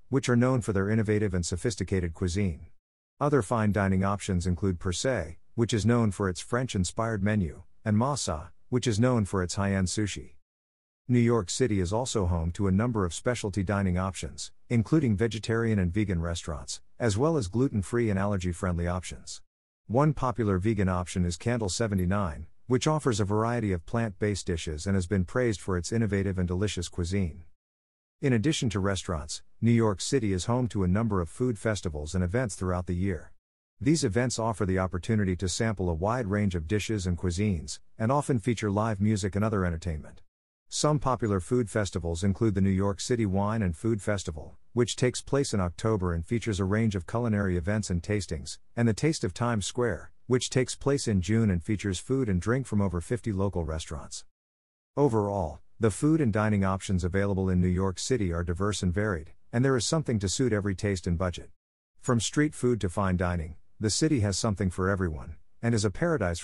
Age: 50-69